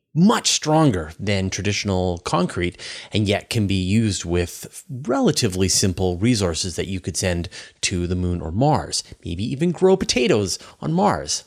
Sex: male